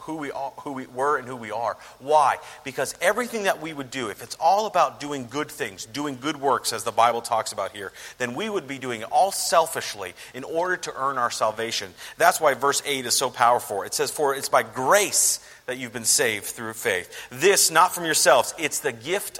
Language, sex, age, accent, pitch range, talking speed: English, male, 40-59, American, 120-180 Hz, 225 wpm